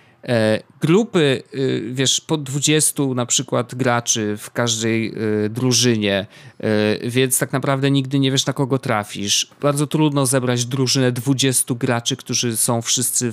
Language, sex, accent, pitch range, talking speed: Polish, male, native, 110-135 Hz, 125 wpm